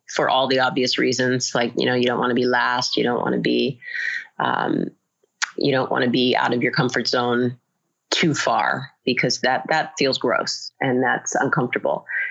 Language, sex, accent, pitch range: English, female, American, 125-140 Hz